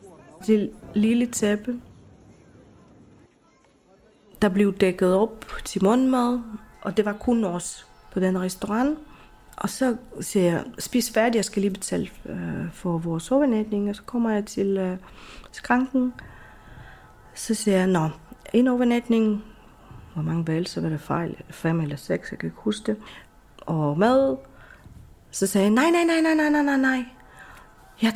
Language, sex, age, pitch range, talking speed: Danish, female, 30-49, 195-245 Hz, 150 wpm